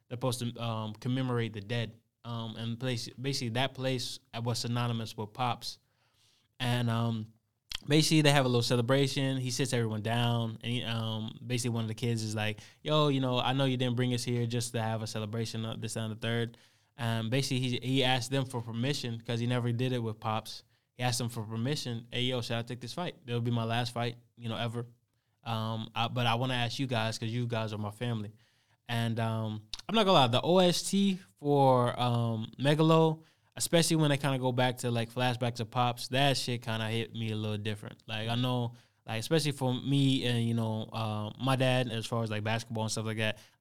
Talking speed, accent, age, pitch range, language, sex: 225 wpm, American, 20-39, 115-130 Hz, English, male